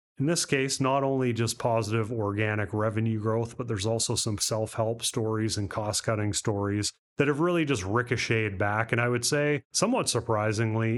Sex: male